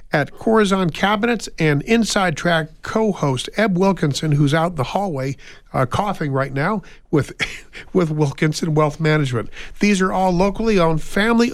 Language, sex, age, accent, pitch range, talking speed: English, male, 50-69, American, 140-180 Hz, 155 wpm